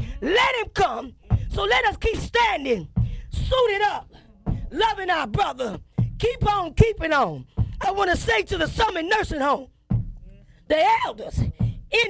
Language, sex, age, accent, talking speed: English, female, 20-39, American, 145 wpm